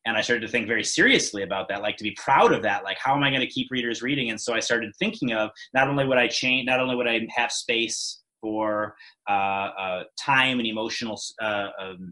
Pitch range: 110-135 Hz